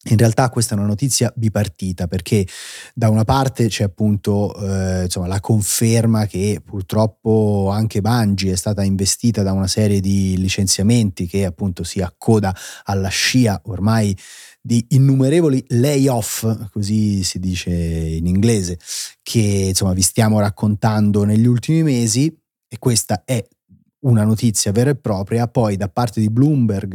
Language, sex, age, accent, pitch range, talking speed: Italian, male, 30-49, native, 95-115 Hz, 145 wpm